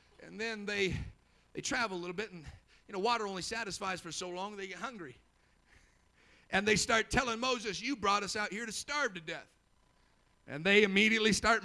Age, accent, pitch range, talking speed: 50-69, American, 195-275 Hz, 195 wpm